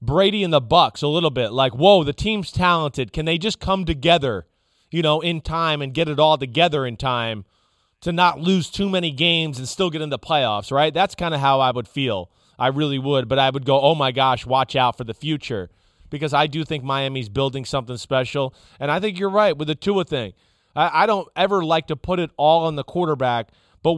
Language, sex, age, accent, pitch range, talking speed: English, male, 30-49, American, 135-170 Hz, 235 wpm